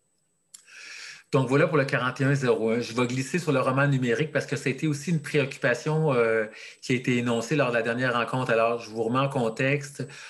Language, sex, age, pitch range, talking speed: French, male, 40-59, 115-140 Hz, 210 wpm